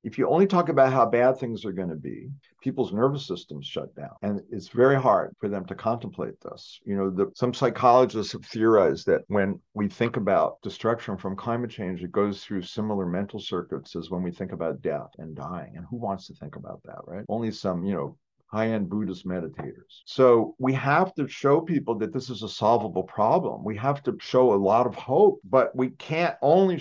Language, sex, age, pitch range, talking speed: English, male, 50-69, 105-150 Hz, 210 wpm